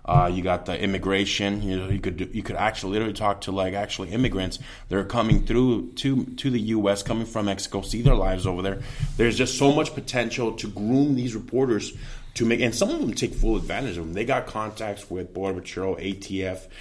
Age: 20-39